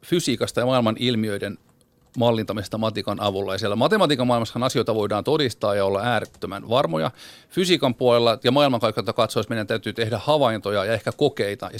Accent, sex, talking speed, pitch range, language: native, male, 155 wpm, 110-140 Hz, Finnish